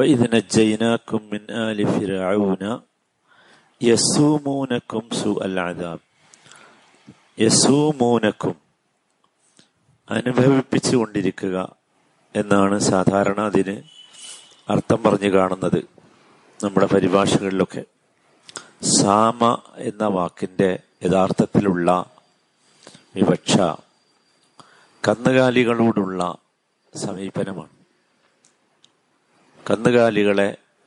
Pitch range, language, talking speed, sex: 95-110 Hz, Malayalam, 35 wpm, male